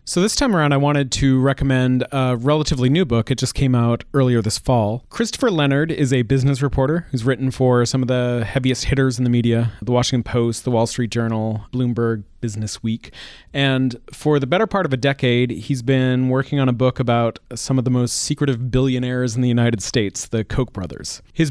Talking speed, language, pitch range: 210 wpm, English, 115-135 Hz